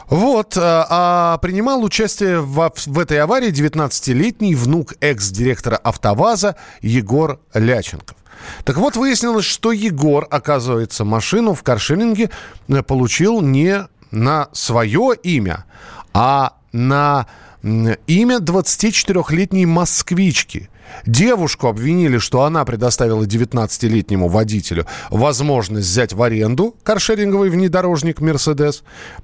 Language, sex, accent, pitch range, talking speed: Russian, male, native, 120-185 Hz, 95 wpm